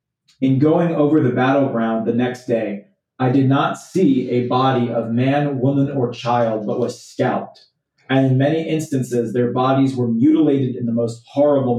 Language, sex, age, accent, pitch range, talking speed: English, male, 30-49, American, 120-140 Hz, 175 wpm